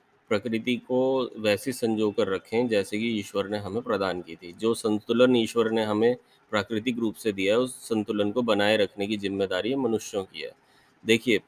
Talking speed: 185 wpm